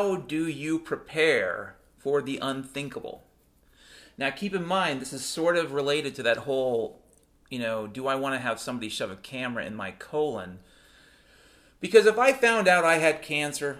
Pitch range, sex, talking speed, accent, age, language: 125-170 Hz, male, 180 wpm, American, 40-59, English